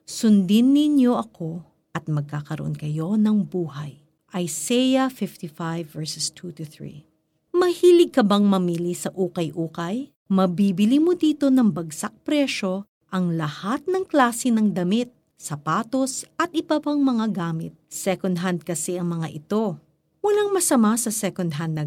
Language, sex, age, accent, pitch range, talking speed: Filipino, female, 50-69, native, 165-240 Hz, 130 wpm